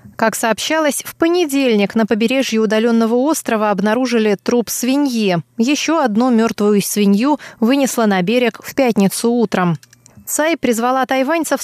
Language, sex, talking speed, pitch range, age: Russian, female, 125 wpm, 205-260 Hz, 20-39